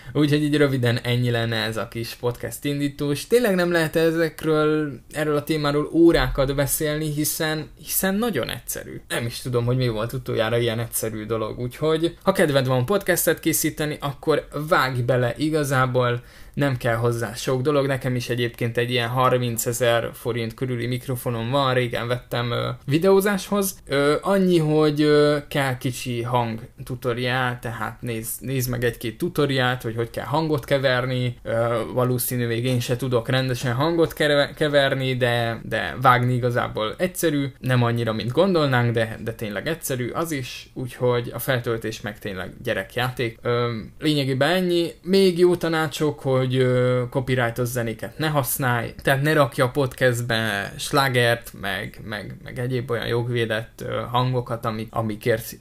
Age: 20-39